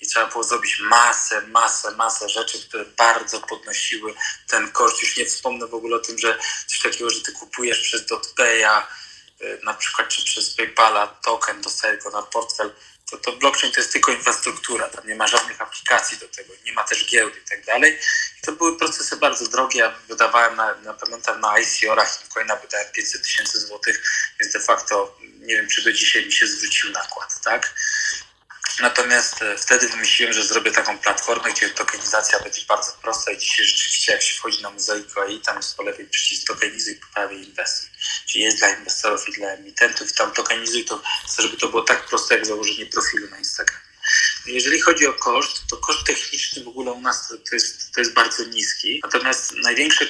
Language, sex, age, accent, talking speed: Polish, male, 20-39, native, 190 wpm